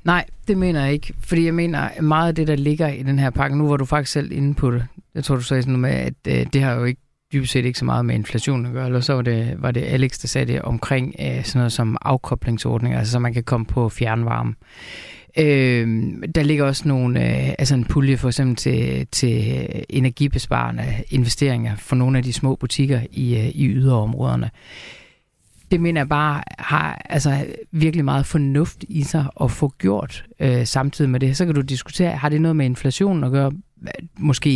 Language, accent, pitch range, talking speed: Danish, native, 125-150 Hz, 210 wpm